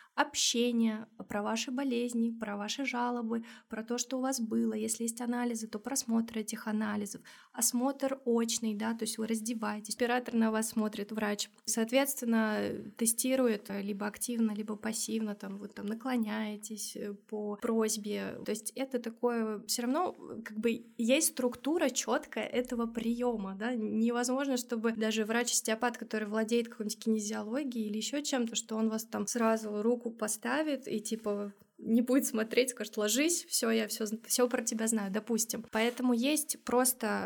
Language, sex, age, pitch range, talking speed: Russian, female, 20-39, 220-250 Hz, 155 wpm